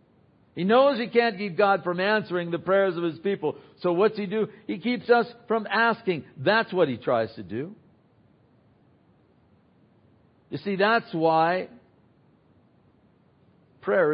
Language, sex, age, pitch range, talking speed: English, male, 60-79, 175-210 Hz, 140 wpm